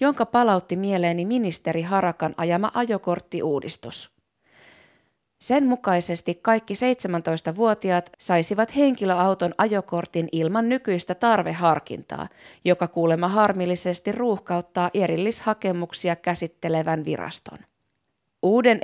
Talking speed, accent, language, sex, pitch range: 80 wpm, native, Finnish, female, 170-210 Hz